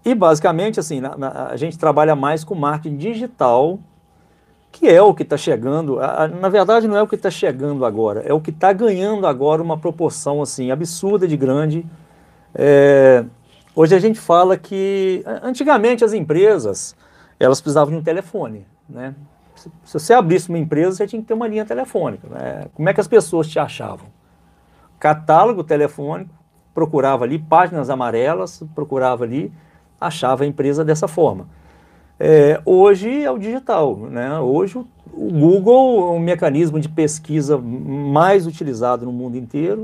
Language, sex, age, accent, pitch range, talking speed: Portuguese, male, 50-69, Brazilian, 140-195 Hz, 155 wpm